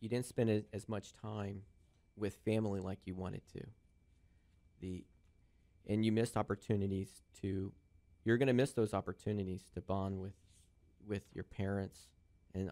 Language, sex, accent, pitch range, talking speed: English, male, American, 85-105 Hz, 150 wpm